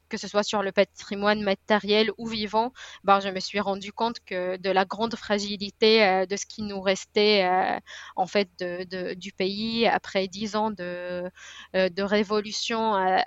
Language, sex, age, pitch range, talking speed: French, female, 20-39, 190-220 Hz, 165 wpm